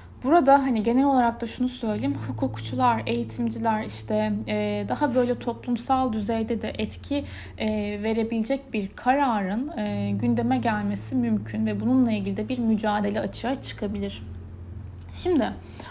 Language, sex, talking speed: Turkish, female, 130 wpm